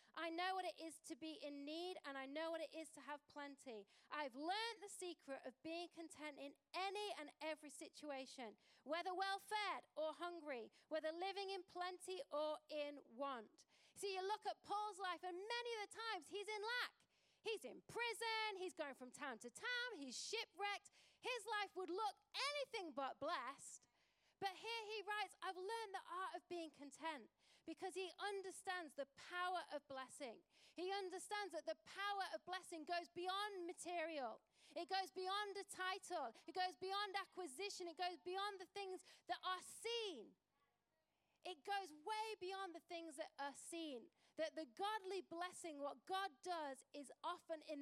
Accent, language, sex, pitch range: British, English, female, 300-385 Hz